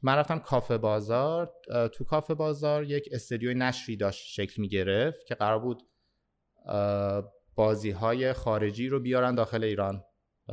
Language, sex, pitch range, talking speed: Persian, male, 100-130 Hz, 135 wpm